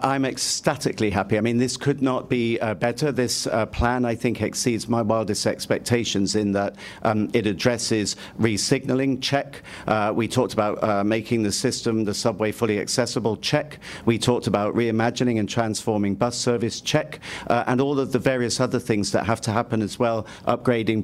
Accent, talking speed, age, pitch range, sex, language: British, 185 wpm, 50-69, 105-130 Hz, male, English